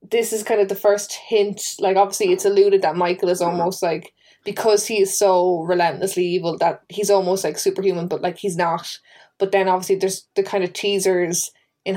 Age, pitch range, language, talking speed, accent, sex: 20-39, 175-200 Hz, English, 200 wpm, Irish, female